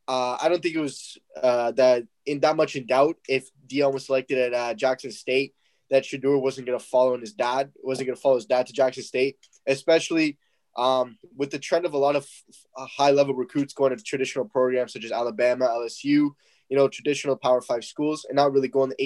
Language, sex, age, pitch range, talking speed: English, male, 10-29, 125-145 Hz, 220 wpm